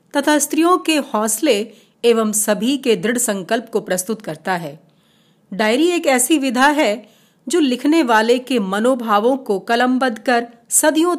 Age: 40-59